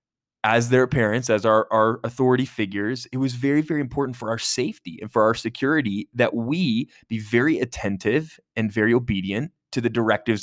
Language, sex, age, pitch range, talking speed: English, male, 20-39, 105-135 Hz, 180 wpm